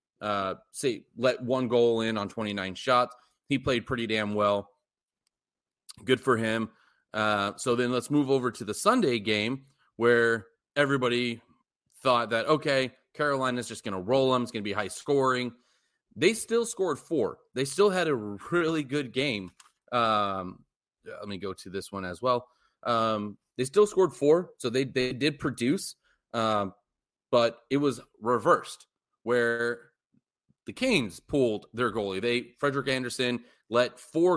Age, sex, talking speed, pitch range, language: 30-49, male, 160 wpm, 110-135 Hz, English